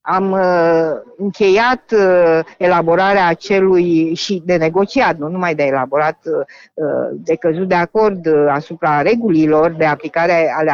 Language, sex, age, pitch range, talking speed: Romanian, female, 50-69, 185-230 Hz, 110 wpm